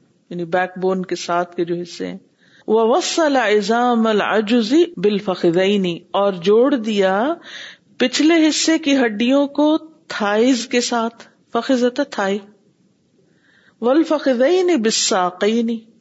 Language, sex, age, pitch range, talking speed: Urdu, female, 50-69, 180-240 Hz, 110 wpm